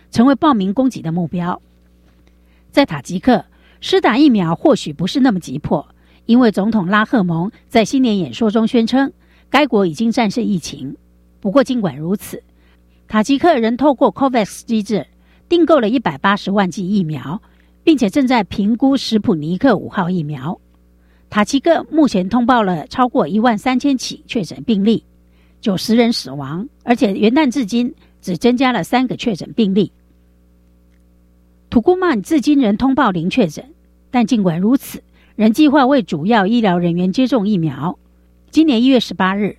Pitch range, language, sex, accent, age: 170-255 Hz, Chinese, female, American, 50-69